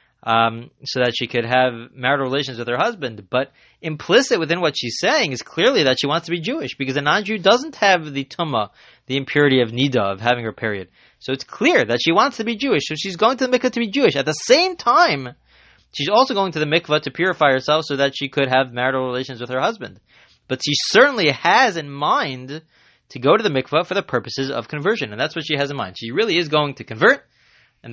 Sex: male